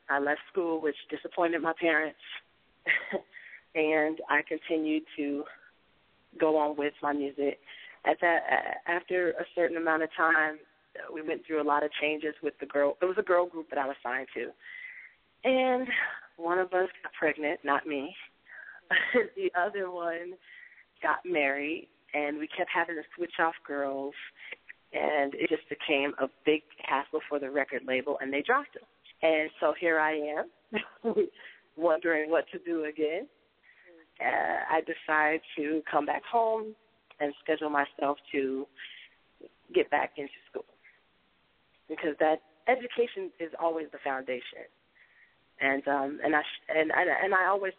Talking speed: 150 wpm